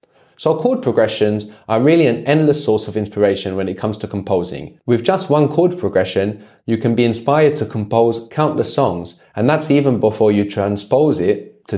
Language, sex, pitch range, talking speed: English, male, 105-145 Hz, 185 wpm